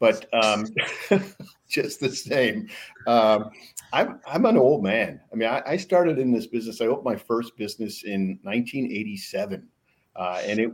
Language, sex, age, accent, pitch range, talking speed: English, male, 50-69, American, 105-120 Hz, 160 wpm